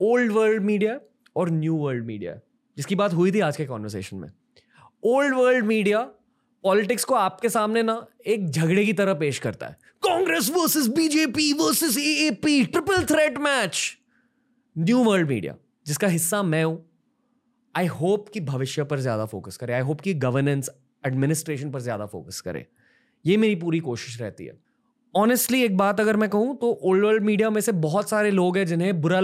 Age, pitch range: 20-39, 160-220 Hz